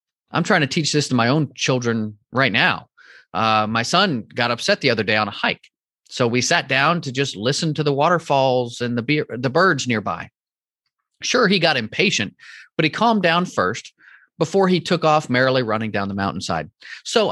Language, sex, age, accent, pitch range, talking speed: English, male, 30-49, American, 130-200 Hz, 200 wpm